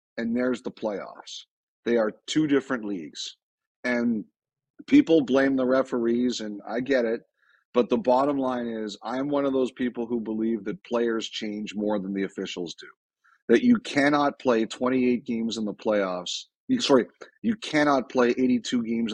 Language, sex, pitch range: English, male, 115-135 Hz